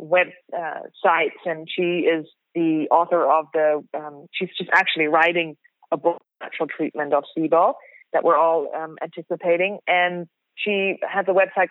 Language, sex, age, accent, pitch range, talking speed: English, female, 30-49, American, 165-185 Hz, 155 wpm